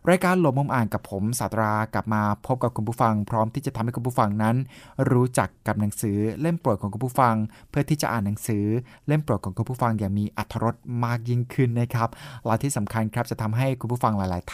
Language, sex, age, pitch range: Thai, male, 20-39, 110-135 Hz